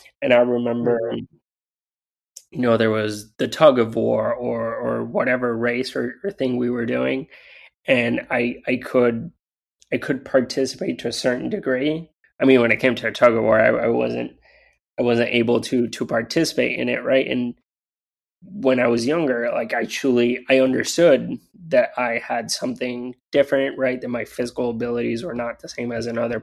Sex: male